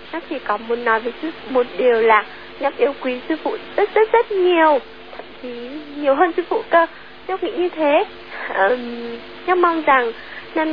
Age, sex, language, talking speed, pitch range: 10-29, female, Vietnamese, 190 wpm, 245-325 Hz